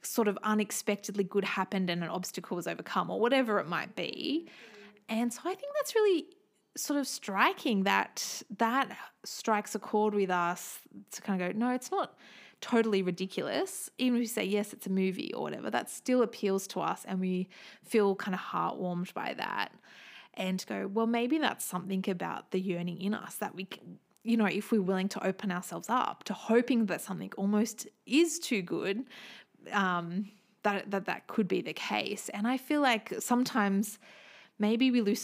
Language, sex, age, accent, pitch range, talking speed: English, female, 20-39, Australian, 190-240 Hz, 190 wpm